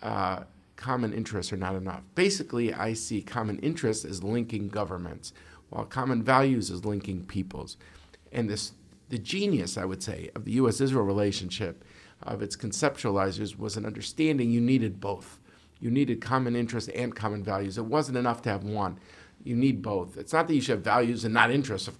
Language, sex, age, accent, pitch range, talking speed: English, male, 50-69, American, 100-120 Hz, 185 wpm